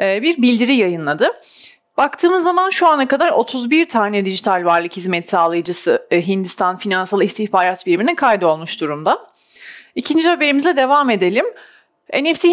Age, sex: 30-49, female